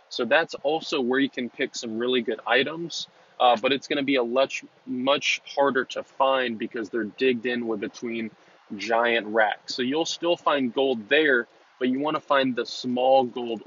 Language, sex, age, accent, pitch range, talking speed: English, male, 20-39, American, 115-135 Hz, 200 wpm